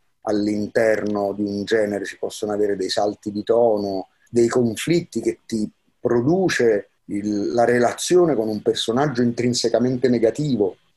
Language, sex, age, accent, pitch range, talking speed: Italian, male, 30-49, native, 105-145 Hz, 125 wpm